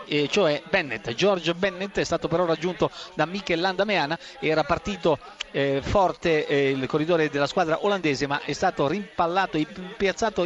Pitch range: 180-230 Hz